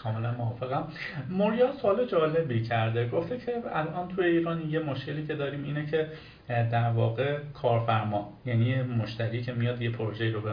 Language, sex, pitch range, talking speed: Persian, male, 120-155 Hz, 160 wpm